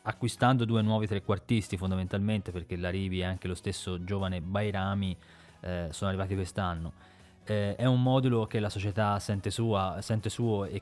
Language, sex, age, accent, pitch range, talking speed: Italian, male, 20-39, native, 95-115 Hz, 160 wpm